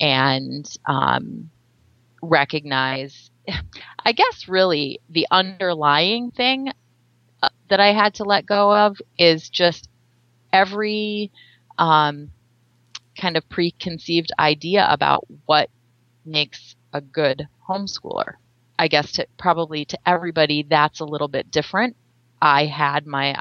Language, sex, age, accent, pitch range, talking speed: English, female, 30-49, American, 135-175 Hz, 115 wpm